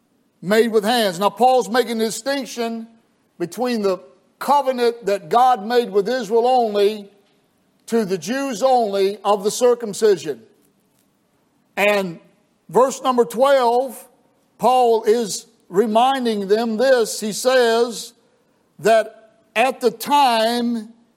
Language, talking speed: English, 110 wpm